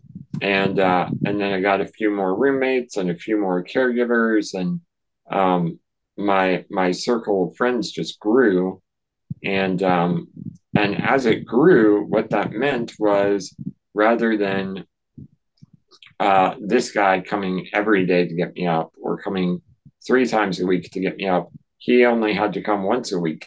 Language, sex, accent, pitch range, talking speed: English, male, American, 90-110 Hz, 165 wpm